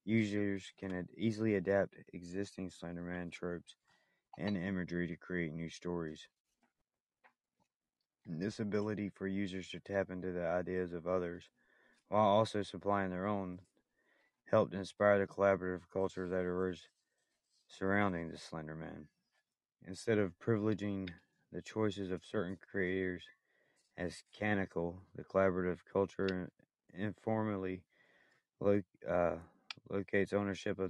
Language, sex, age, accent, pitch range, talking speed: English, male, 30-49, American, 90-100 Hz, 115 wpm